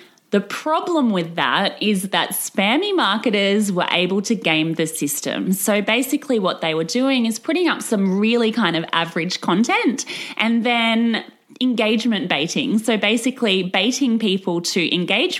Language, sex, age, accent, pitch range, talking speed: English, female, 20-39, Australian, 175-245 Hz, 150 wpm